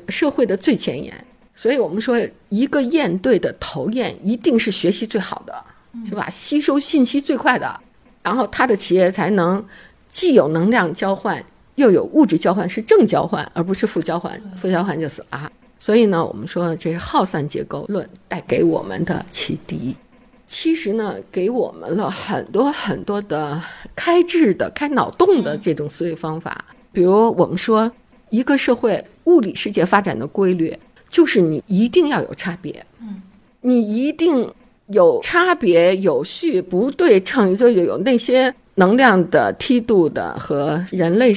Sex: female